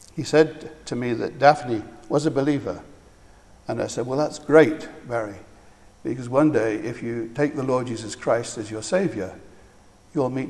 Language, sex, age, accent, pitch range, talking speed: English, male, 60-79, British, 105-135 Hz, 175 wpm